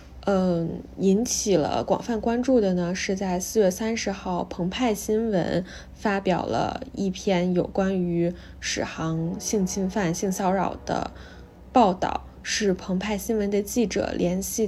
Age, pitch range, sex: 10-29, 175-220 Hz, female